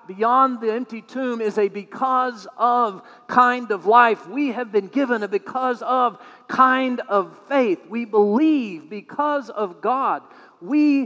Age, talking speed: 50-69, 145 wpm